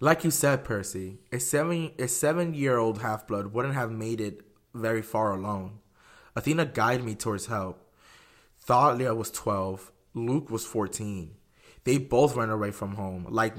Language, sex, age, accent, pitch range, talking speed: English, male, 20-39, American, 105-130 Hz, 150 wpm